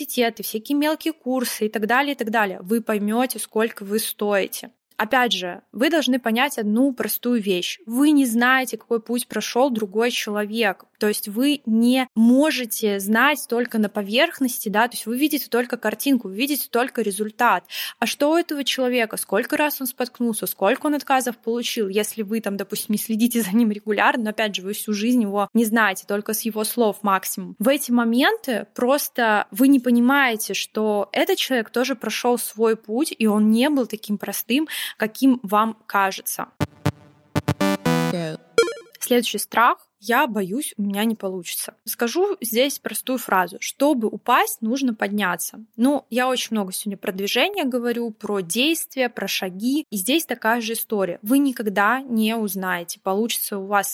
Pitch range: 210-255 Hz